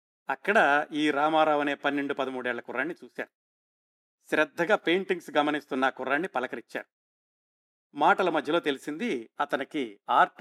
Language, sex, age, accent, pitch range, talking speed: Telugu, male, 50-69, native, 140-180 Hz, 110 wpm